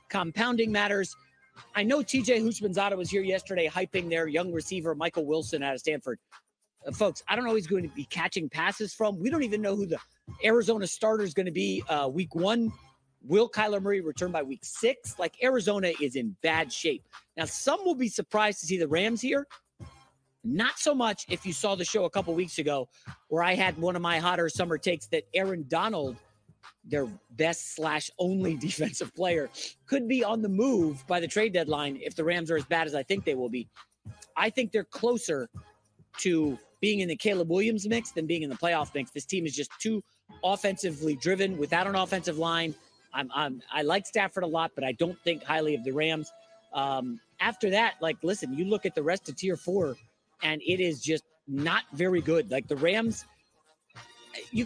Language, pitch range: English, 160-215 Hz